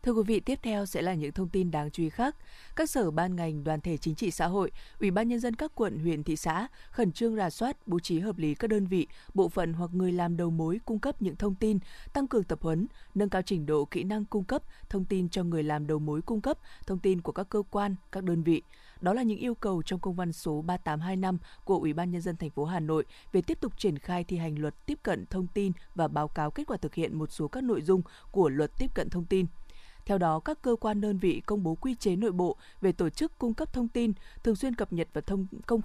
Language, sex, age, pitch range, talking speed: Vietnamese, female, 20-39, 170-220 Hz, 270 wpm